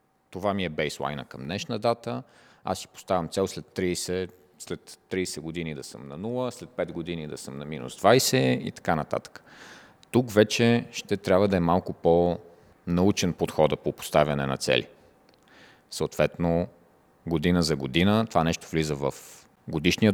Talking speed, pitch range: 155 wpm, 85-110 Hz